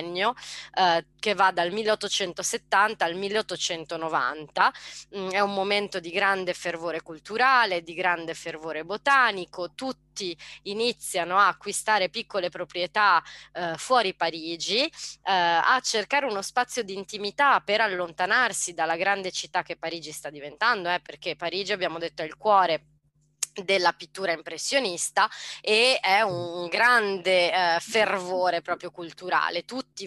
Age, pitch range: 20-39, 170-215 Hz